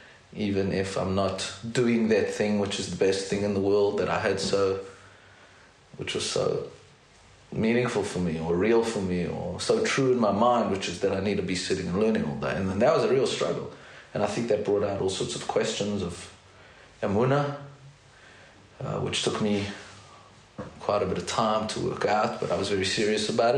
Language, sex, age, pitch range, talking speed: English, male, 30-49, 95-110 Hz, 215 wpm